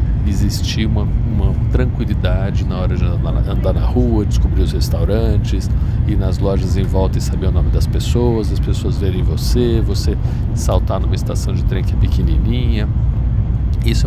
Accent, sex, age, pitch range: Brazilian, male, 50-69, 95-115 Hz